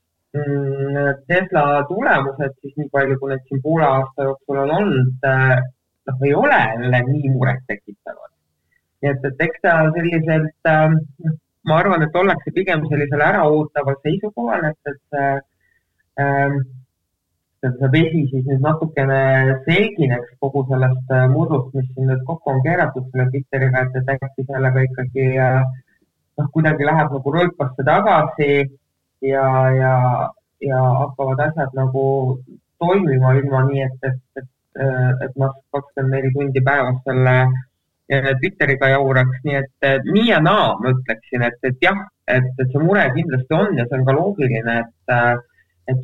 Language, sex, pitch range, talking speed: English, male, 130-145 Hz, 130 wpm